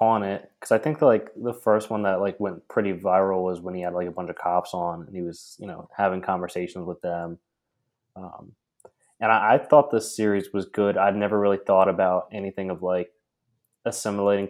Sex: male